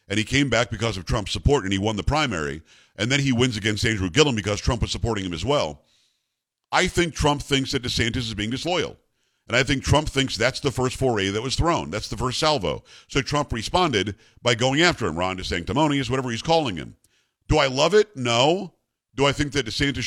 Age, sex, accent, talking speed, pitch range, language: 50-69, male, American, 225 wpm, 110-140 Hz, English